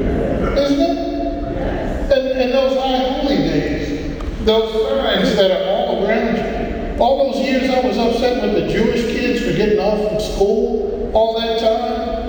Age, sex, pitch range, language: 50-69, male, 200-265 Hz, English